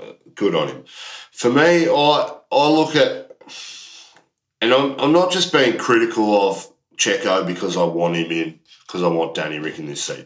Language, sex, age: English, male, 40-59